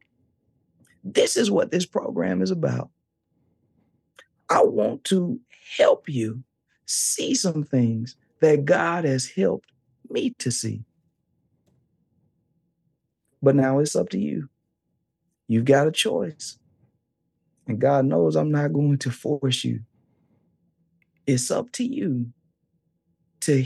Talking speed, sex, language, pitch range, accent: 115 wpm, male, English, 120-165 Hz, American